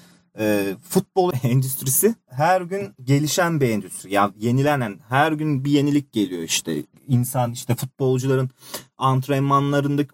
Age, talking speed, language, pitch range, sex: 40-59, 125 wpm, Turkish, 130-165 Hz, male